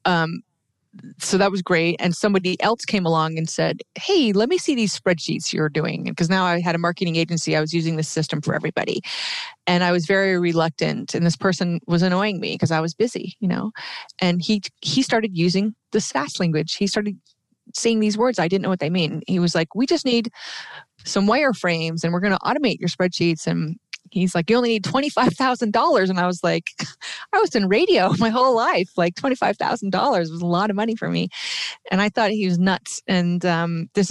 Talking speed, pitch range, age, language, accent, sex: 215 wpm, 165-210 Hz, 30-49, English, American, female